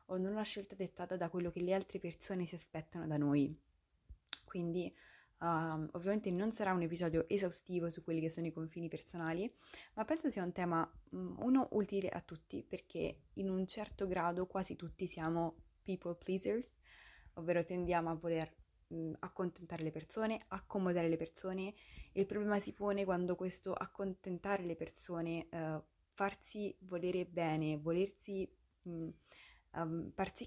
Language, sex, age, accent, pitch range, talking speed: Italian, female, 20-39, native, 165-195 Hz, 145 wpm